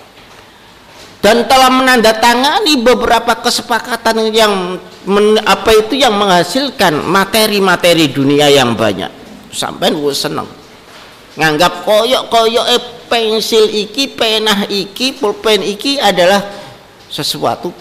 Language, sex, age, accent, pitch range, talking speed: Indonesian, male, 50-69, native, 160-225 Hz, 100 wpm